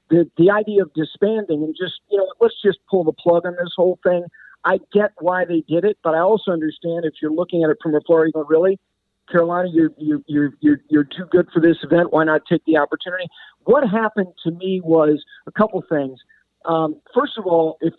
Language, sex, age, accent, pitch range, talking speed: English, male, 50-69, American, 160-205 Hz, 225 wpm